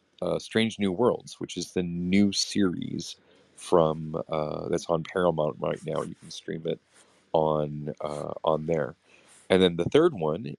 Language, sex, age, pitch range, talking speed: English, male, 40-59, 80-95 Hz, 165 wpm